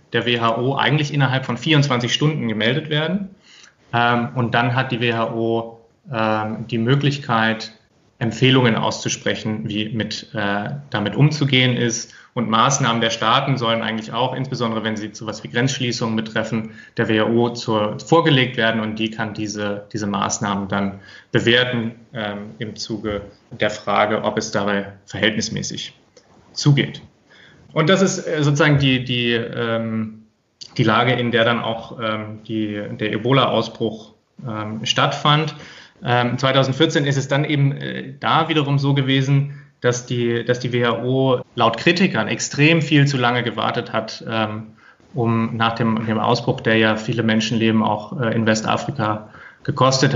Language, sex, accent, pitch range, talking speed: German, male, German, 110-130 Hz, 135 wpm